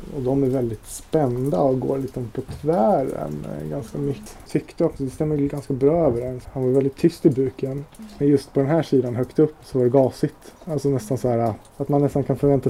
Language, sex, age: Swedish, male, 20-39